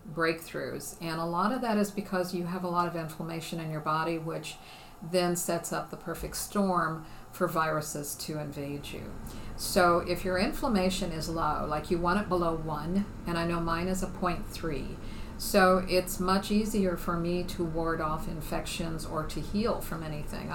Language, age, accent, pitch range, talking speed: English, 50-69, American, 165-185 Hz, 185 wpm